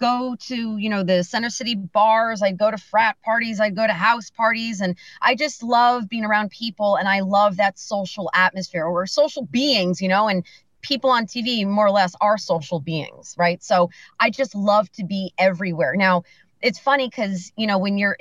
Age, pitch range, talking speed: 30-49, 180-225 Hz, 205 wpm